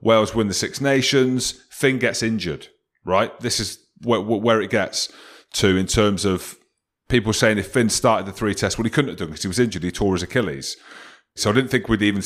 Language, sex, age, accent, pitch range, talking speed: English, male, 30-49, British, 110-135 Hz, 230 wpm